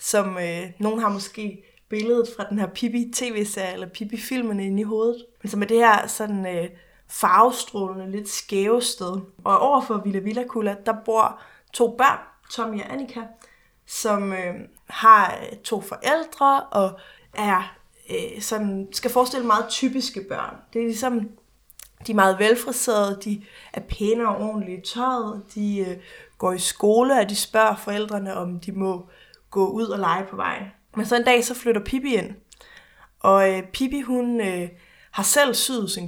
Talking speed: 170 wpm